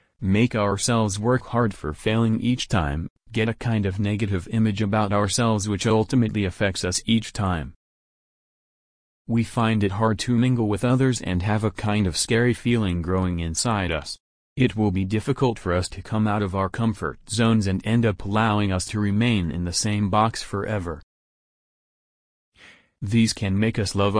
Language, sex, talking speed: English, male, 175 wpm